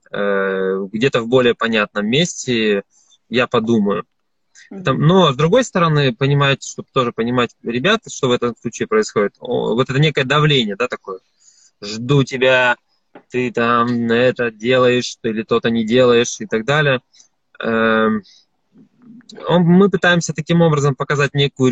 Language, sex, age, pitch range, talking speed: Russian, male, 20-39, 120-155 Hz, 125 wpm